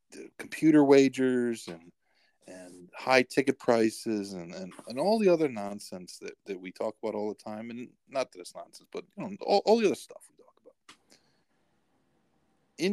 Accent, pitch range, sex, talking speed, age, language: American, 100-135 Hz, male, 185 wpm, 50-69, English